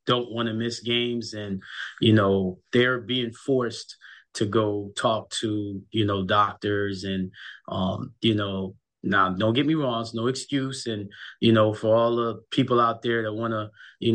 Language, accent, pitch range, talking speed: English, American, 110-135 Hz, 185 wpm